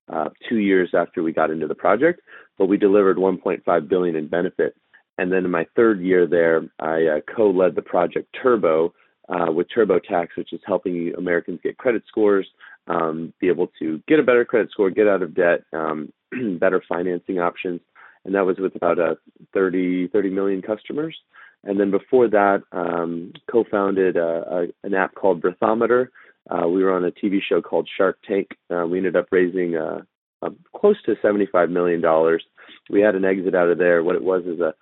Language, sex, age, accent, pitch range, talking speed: English, male, 30-49, American, 85-105 Hz, 190 wpm